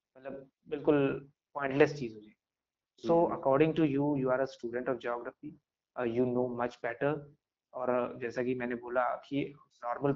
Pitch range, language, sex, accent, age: 125-155 Hz, English, male, Indian, 20-39